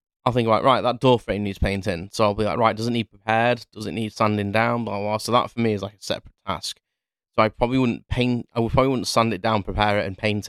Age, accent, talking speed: 20-39, British, 290 wpm